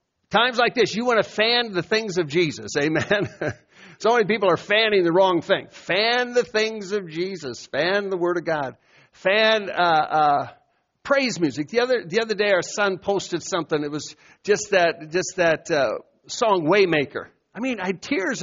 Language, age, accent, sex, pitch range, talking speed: English, 60-79, American, male, 175-240 Hz, 190 wpm